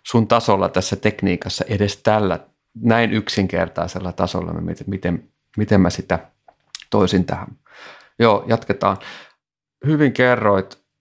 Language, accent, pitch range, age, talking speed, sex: Finnish, native, 95-115 Hz, 30-49, 110 wpm, male